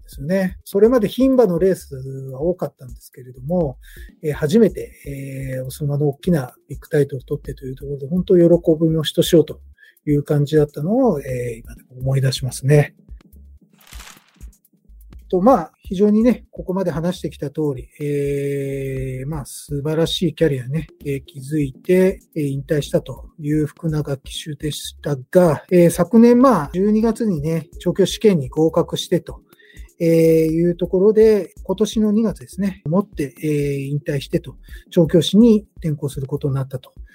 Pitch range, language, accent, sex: 140-185 Hz, Japanese, native, male